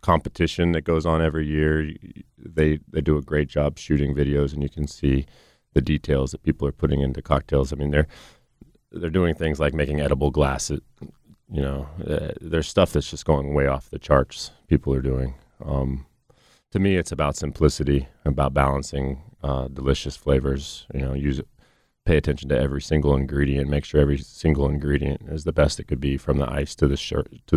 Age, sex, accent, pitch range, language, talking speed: 30-49, male, American, 70-75 Hz, English, 190 wpm